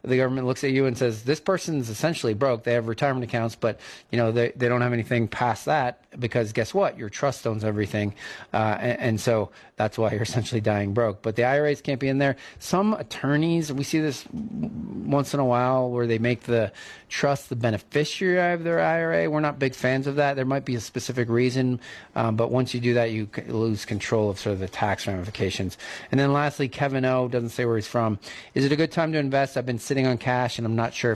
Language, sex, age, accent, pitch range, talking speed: English, male, 30-49, American, 115-145 Hz, 230 wpm